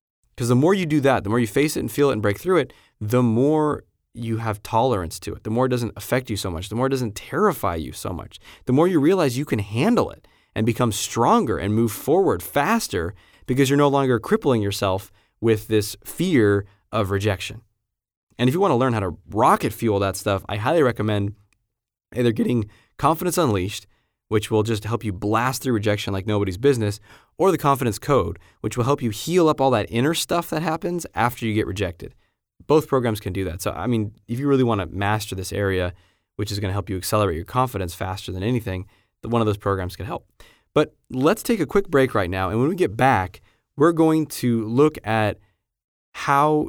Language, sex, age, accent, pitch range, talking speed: English, male, 20-39, American, 100-130 Hz, 215 wpm